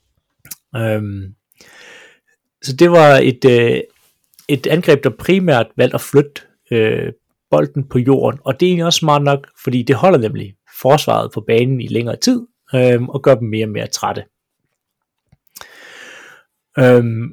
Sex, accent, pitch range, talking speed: male, native, 115-140 Hz, 150 wpm